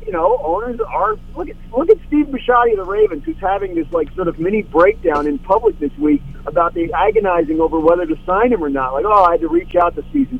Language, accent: English, American